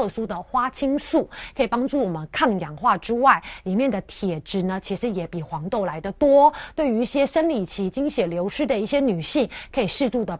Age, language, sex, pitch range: 30-49, Chinese, female, 190-260 Hz